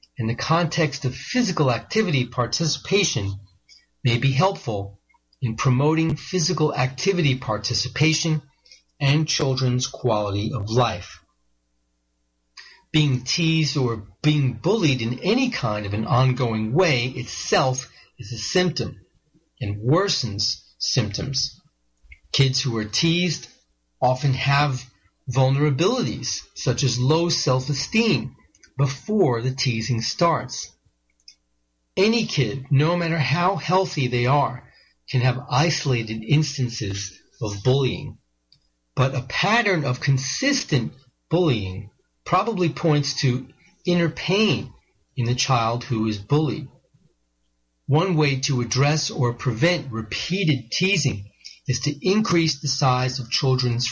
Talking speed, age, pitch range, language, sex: 110 wpm, 40-59, 115-155 Hz, English, male